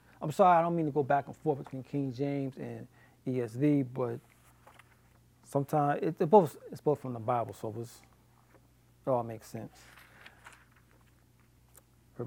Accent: American